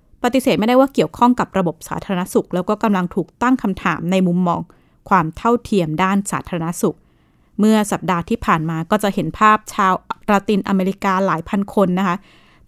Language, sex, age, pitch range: Thai, female, 20-39, 175-225 Hz